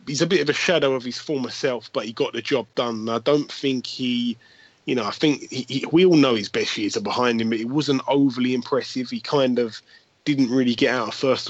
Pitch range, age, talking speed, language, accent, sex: 105-125 Hz, 20-39, 245 wpm, English, British, male